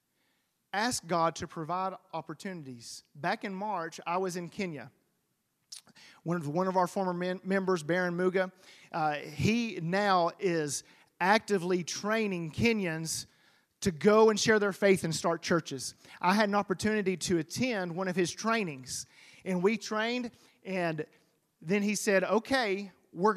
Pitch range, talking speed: 160-205 Hz, 145 wpm